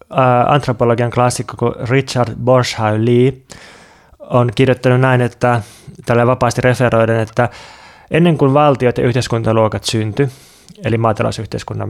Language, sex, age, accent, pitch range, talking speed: Finnish, male, 20-39, native, 115-135 Hz, 110 wpm